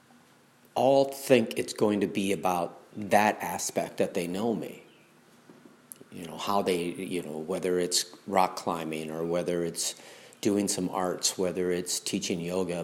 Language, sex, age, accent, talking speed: English, male, 50-69, American, 155 wpm